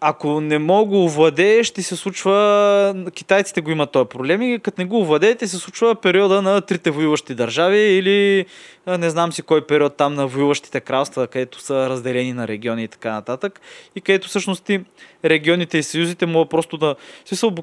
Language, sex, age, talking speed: Bulgarian, male, 20-39, 175 wpm